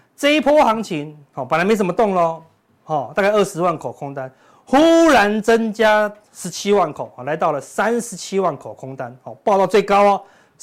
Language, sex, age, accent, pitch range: Chinese, male, 30-49, native, 150-220 Hz